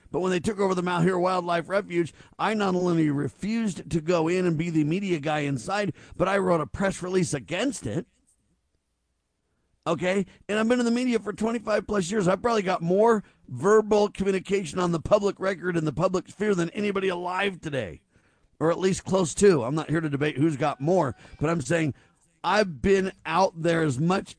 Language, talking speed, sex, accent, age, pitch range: English, 200 wpm, male, American, 50-69, 155-205 Hz